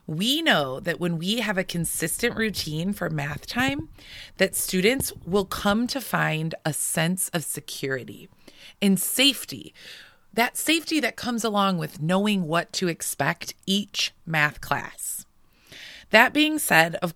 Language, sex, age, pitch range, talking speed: English, female, 30-49, 170-230 Hz, 145 wpm